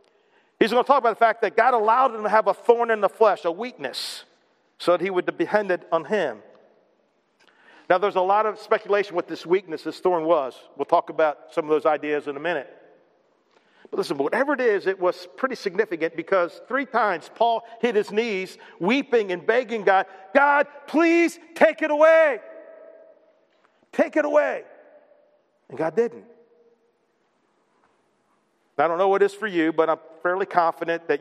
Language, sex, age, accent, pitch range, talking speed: English, male, 50-69, American, 165-240 Hz, 180 wpm